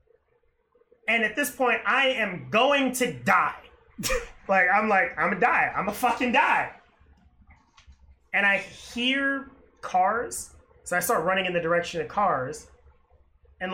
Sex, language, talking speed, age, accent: male, English, 155 wpm, 30-49, American